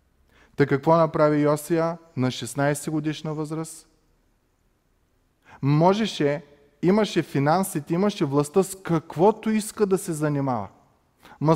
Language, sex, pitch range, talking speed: Bulgarian, male, 135-170 Hz, 105 wpm